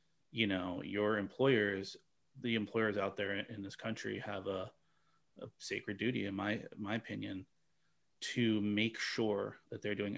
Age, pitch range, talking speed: 30-49, 100-115 Hz, 155 wpm